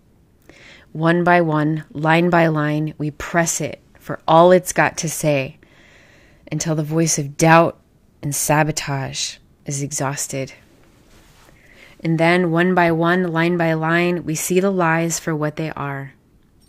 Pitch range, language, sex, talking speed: 145-170 Hz, English, female, 145 wpm